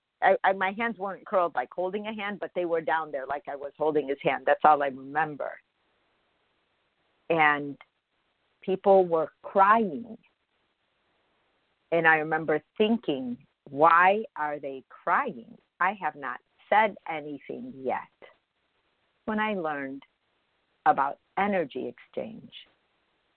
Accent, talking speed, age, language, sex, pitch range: American, 120 wpm, 50-69, English, female, 150-200 Hz